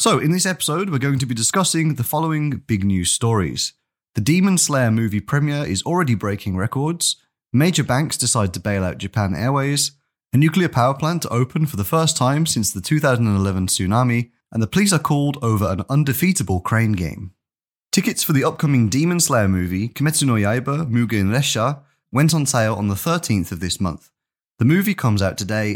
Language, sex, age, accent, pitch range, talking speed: English, male, 30-49, British, 95-145 Hz, 190 wpm